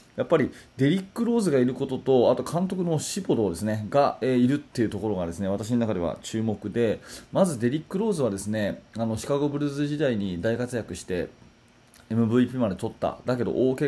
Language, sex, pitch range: Japanese, male, 100-135 Hz